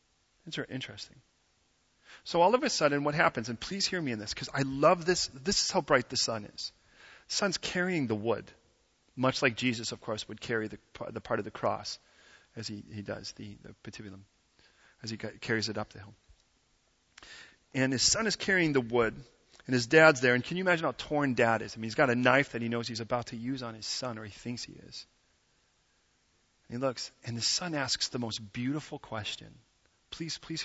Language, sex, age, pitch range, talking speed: English, male, 40-59, 105-145 Hz, 215 wpm